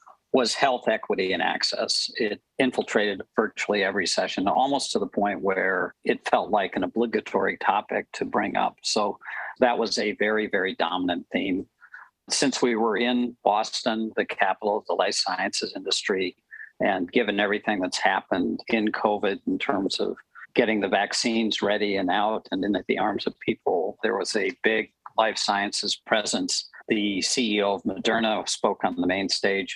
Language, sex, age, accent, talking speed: English, male, 50-69, American, 165 wpm